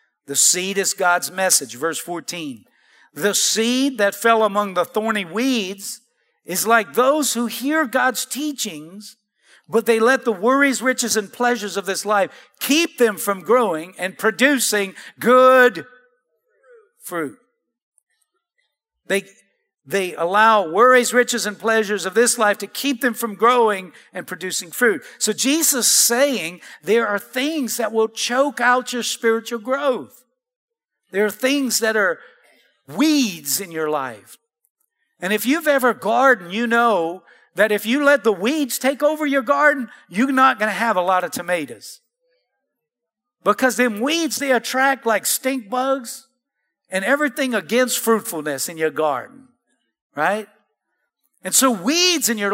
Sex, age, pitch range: male, 50-69, 210-270 Hz